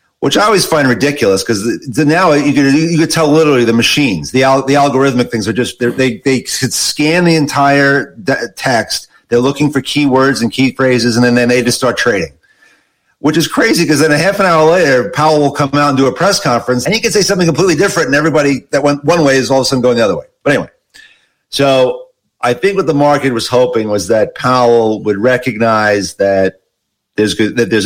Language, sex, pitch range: English, male, 110-155 Hz